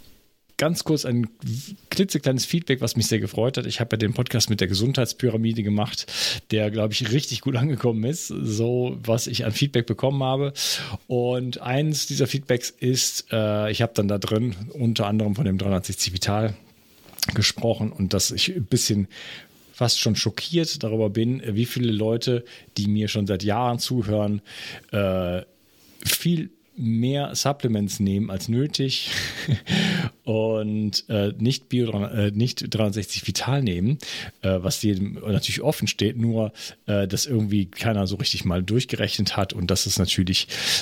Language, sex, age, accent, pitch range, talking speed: German, male, 40-59, German, 105-125 Hz, 150 wpm